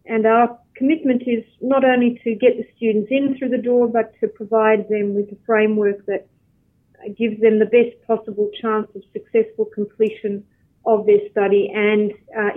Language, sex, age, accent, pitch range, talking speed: English, female, 40-59, Australian, 210-230 Hz, 170 wpm